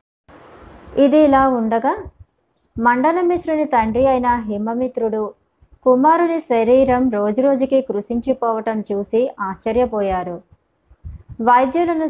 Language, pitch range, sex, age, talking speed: Telugu, 215-260 Hz, male, 20-39, 70 wpm